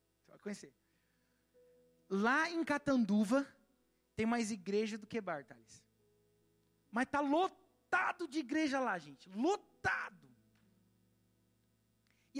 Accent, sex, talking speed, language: Brazilian, male, 100 wpm, Portuguese